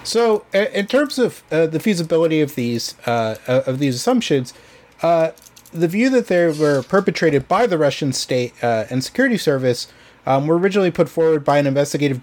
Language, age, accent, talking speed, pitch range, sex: English, 30-49, American, 175 wpm, 125-160 Hz, male